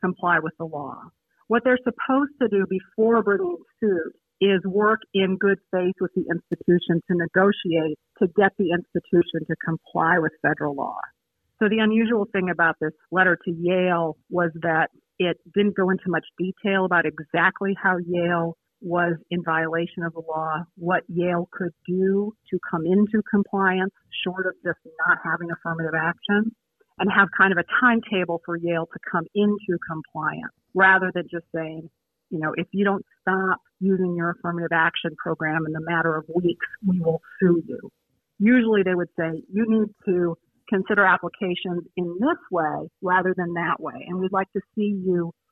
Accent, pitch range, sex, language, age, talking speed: American, 170-200 Hz, female, English, 50-69, 175 wpm